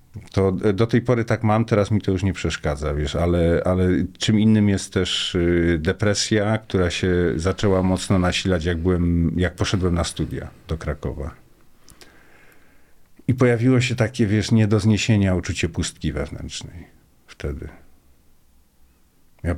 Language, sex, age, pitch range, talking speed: Polish, male, 50-69, 80-100 Hz, 140 wpm